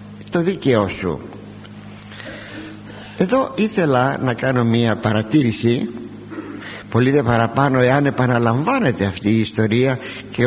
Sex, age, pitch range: male, 60-79, 105-145 Hz